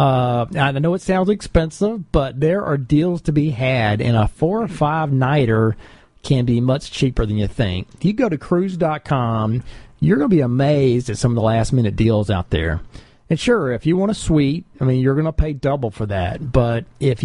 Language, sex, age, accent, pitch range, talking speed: English, male, 40-59, American, 115-155 Hz, 210 wpm